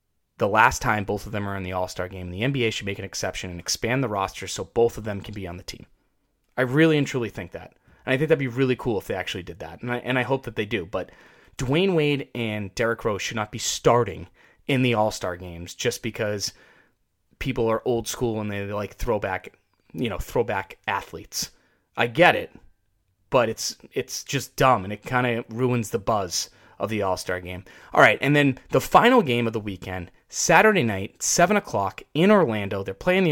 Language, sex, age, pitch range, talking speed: English, male, 20-39, 95-130 Hz, 220 wpm